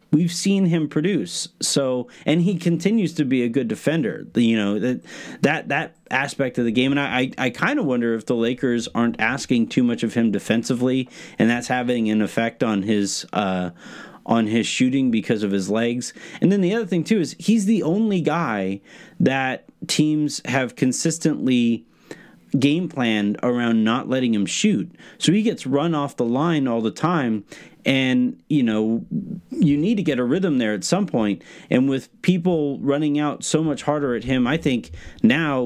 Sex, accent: male, American